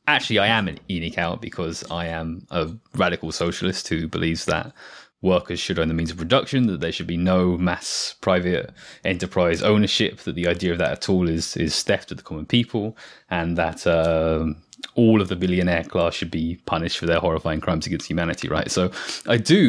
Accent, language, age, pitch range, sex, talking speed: British, English, 20-39, 85-95 Hz, male, 200 wpm